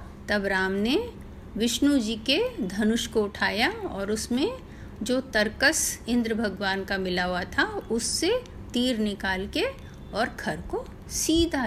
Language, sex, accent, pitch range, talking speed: Hindi, female, native, 205-260 Hz, 140 wpm